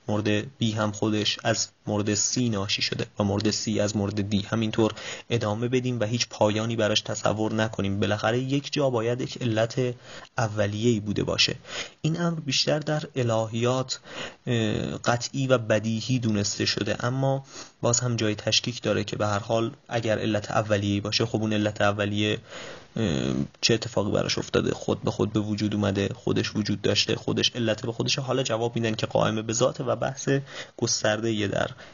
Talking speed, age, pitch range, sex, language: 165 wpm, 30-49, 105-125 Hz, male, Persian